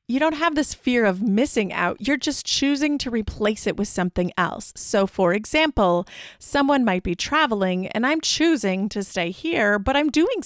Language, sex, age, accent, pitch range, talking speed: English, female, 30-49, American, 190-275 Hz, 190 wpm